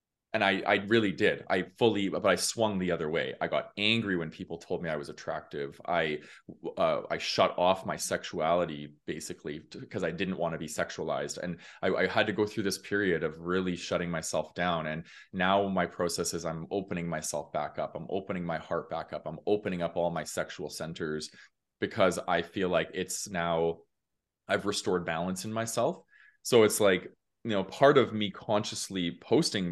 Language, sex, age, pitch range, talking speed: English, male, 20-39, 85-100 Hz, 195 wpm